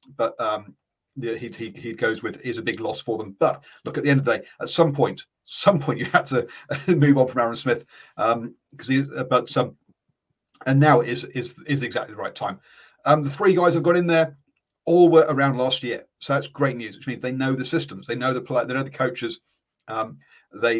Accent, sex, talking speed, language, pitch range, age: British, male, 240 wpm, English, 120-160 Hz, 40-59